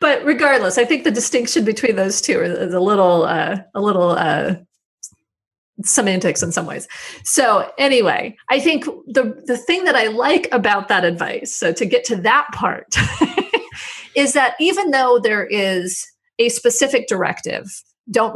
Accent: American